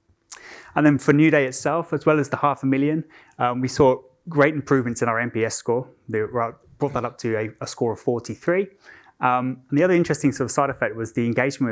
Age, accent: 20-39, British